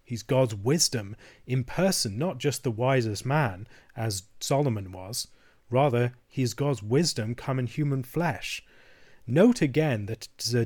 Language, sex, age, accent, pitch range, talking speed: English, male, 30-49, British, 115-145 Hz, 145 wpm